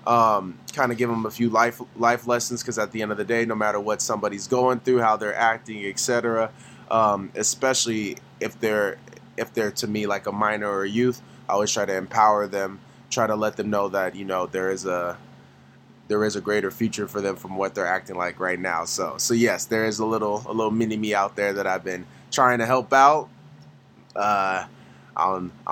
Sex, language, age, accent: male, English, 20-39, American